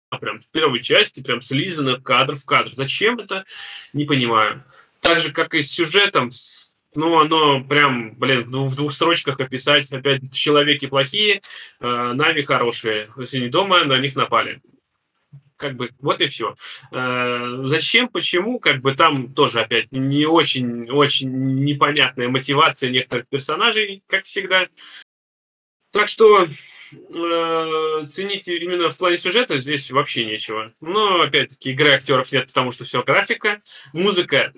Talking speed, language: 145 wpm, Russian